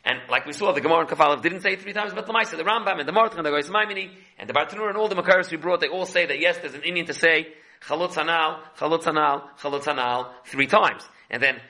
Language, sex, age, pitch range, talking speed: English, male, 40-59, 150-185 Hz, 260 wpm